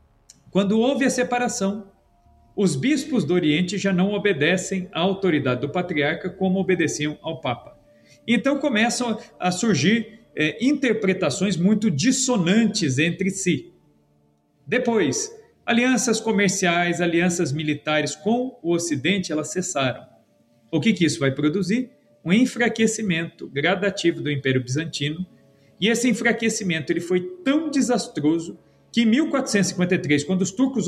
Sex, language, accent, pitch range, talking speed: male, Portuguese, Brazilian, 155-235 Hz, 120 wpm